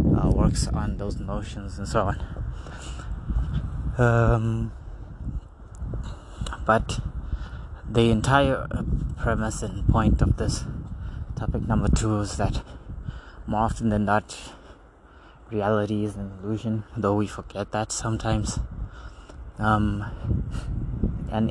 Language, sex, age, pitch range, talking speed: English, male, 20-39, 100-115 Hz, 105 wpm